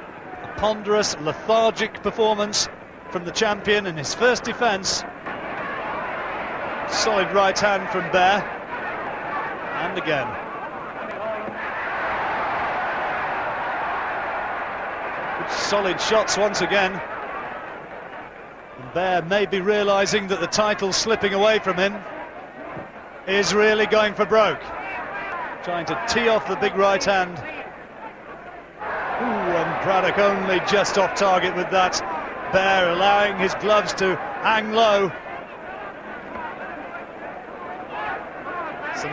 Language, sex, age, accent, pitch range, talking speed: English, male, 40-59, British, 180-205 Hz, 95 wpm